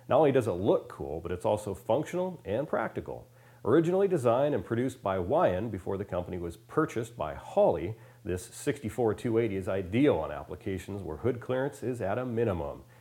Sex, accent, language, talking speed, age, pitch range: male, American, English, 175 wpm, 40-59, 105-140 Hz